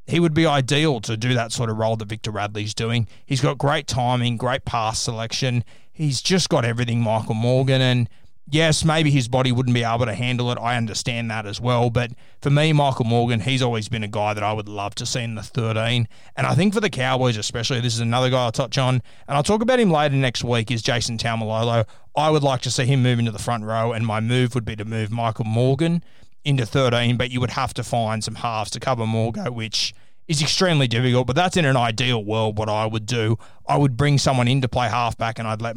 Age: 20-39